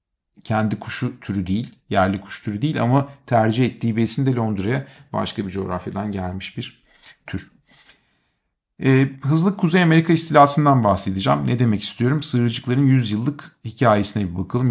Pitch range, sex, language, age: 105-135 Hz, male, Turkish, 50-69